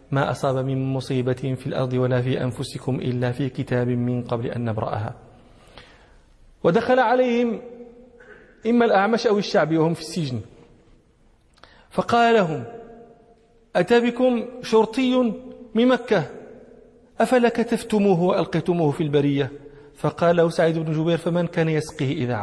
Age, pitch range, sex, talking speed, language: 40-59, 150-225 Hz, male, 120 wpm, English